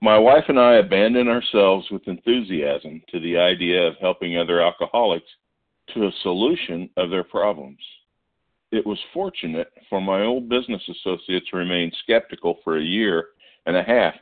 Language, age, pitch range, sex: English, 50-69, 85-105 Hz, male